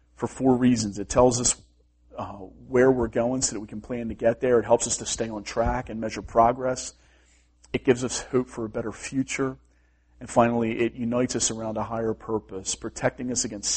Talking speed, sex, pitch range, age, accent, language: 210 wpm, male, 95-120 Hz, 40-59, American, English